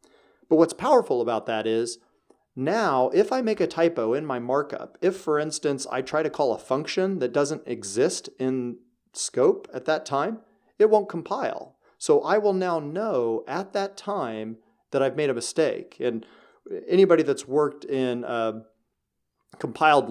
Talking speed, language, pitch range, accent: 165 wpm, English, 125-165 Hz, American